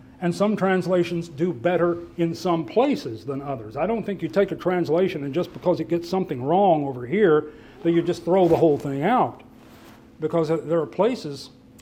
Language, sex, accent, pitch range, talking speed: English, male, American, 135-185 Hz, 195 wpm